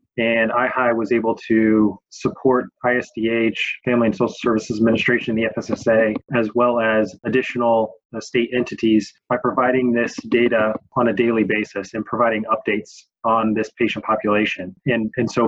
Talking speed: 150 wpm